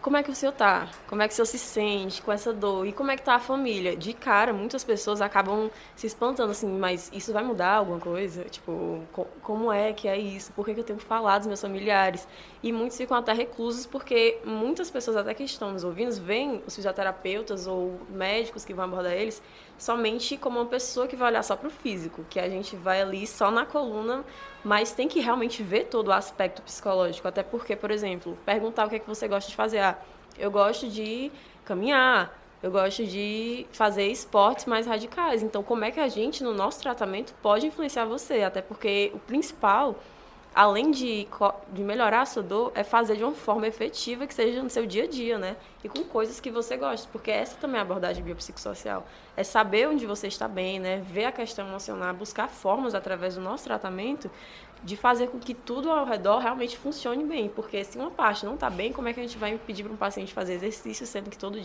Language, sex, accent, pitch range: Portuguese, female, Brazilian, 195-235 Hz